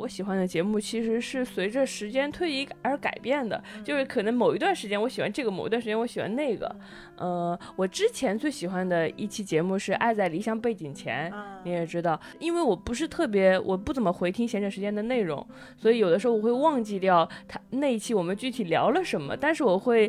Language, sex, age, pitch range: Chinese, female, 20-39, 175-235 Hz